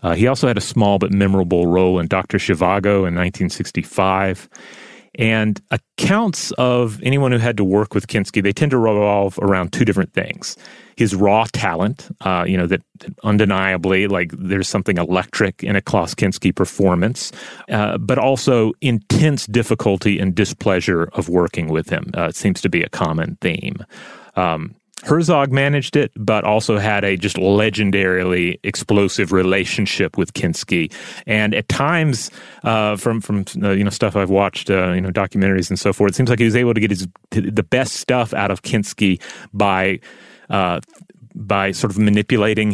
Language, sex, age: English, male, 30-49